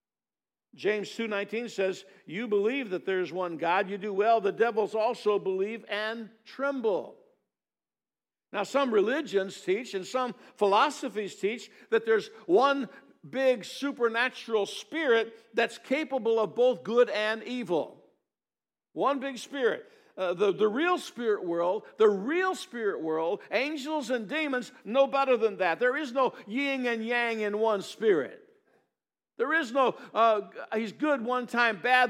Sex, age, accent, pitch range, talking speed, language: male, 60-79, American, 210-270 Hz, 145 wpm, English